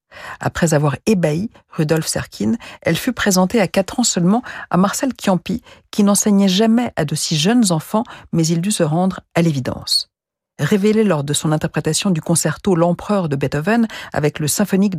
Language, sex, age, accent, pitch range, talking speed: French, female, 50-69, French, 160-220 Hz, 170 wpm